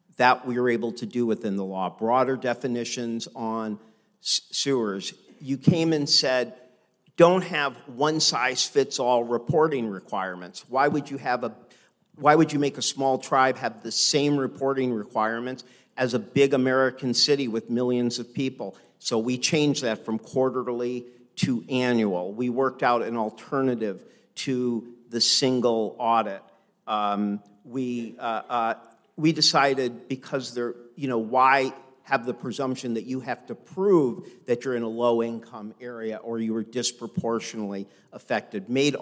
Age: 50-69